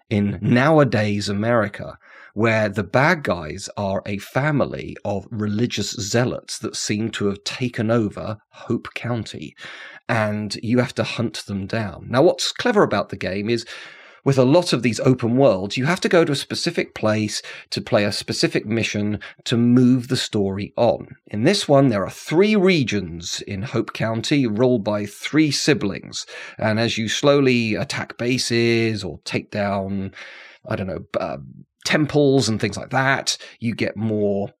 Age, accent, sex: 30-49, British, male